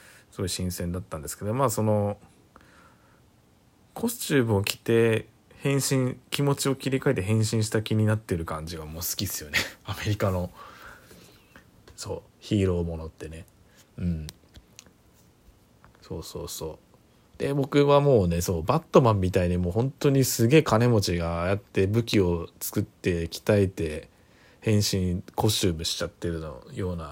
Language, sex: Japanese, male